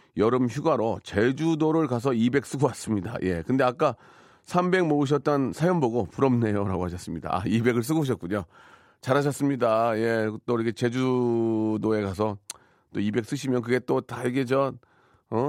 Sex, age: male, 40-59